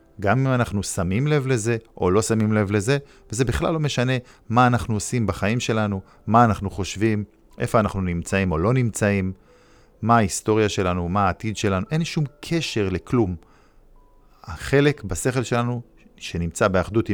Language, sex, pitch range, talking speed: Hebrew, male, 95-125 Hz, 155 wpm